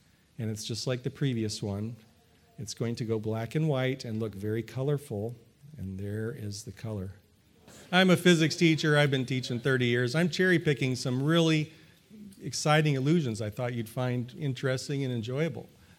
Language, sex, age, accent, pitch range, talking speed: English, male, 40-59, American, 110-140 Hz, 175 wpm